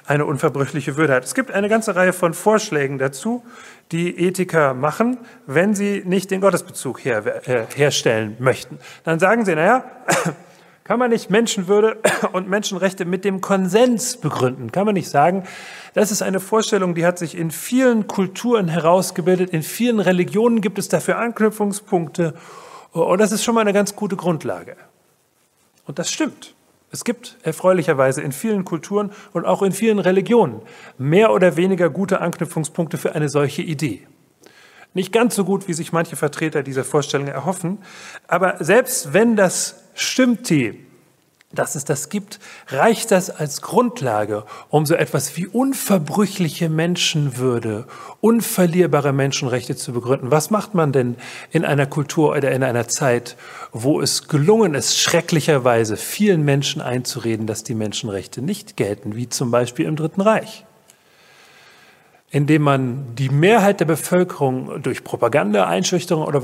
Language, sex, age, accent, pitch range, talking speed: German, male, 40-59, German, 145-205 Hz, 150 wpm